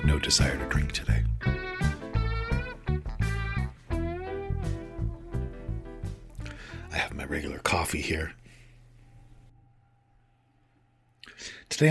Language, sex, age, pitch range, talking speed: English, male, 40-59, 85-115 Hz, 60 wpm